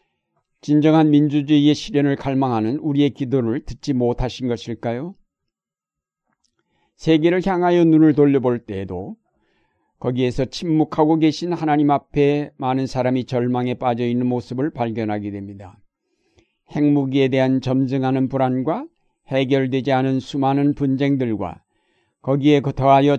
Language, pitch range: Korean, 125-145 Hz